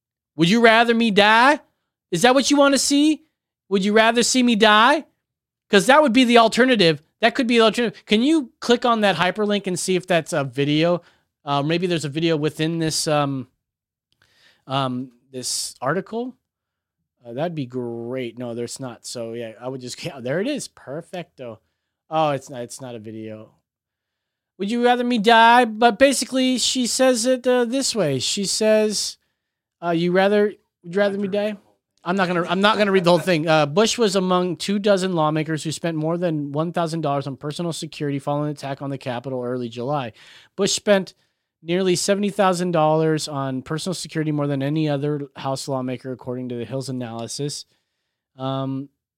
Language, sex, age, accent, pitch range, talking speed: English, male, 30-49, American, 140-210 Hz, 190 wpm